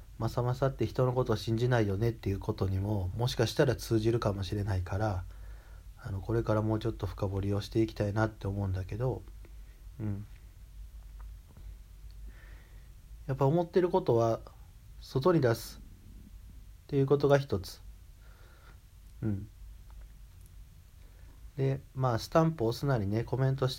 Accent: native